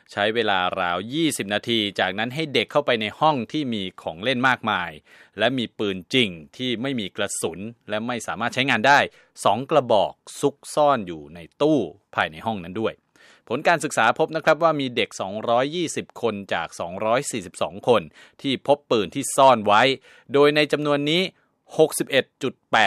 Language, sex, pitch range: Thai, male, 105-145 Hz